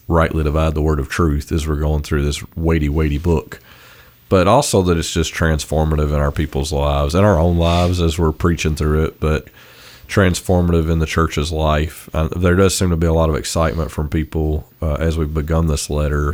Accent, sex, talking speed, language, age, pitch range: American, male, 210 wpm, English, 40-59, 75-85 Hz